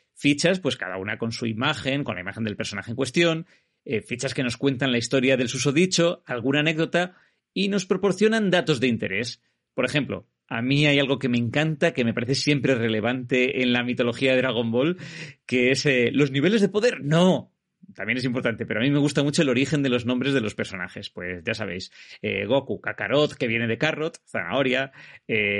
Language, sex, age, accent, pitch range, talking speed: Spanish, male, 30-49, Spanish, 120-165 Hz, 205 wpm